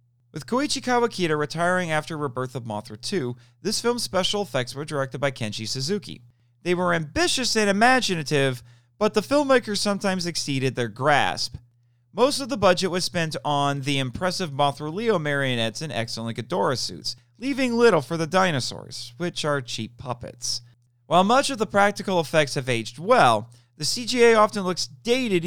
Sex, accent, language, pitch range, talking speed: male, American, English, 120-190 Hz, 165 wpm